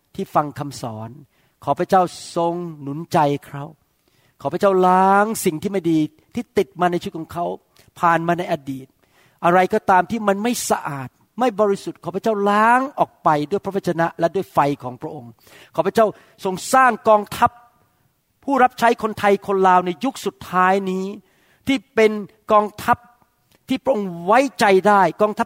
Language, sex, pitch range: Thai, male, 145-205 Hz